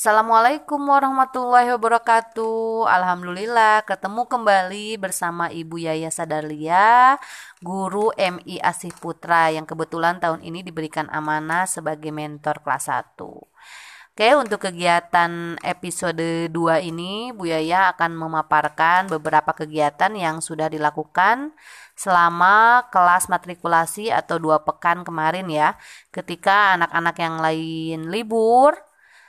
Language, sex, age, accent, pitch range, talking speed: Indonesian, female, 20-39, native, 160-195 Hz, 105 wpm